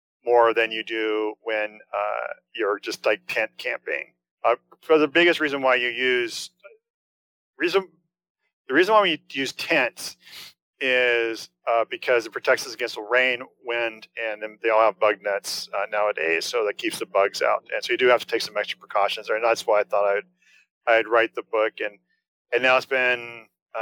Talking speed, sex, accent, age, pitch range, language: 195 wpm, male, American, 40-59, 110-150 Hz, English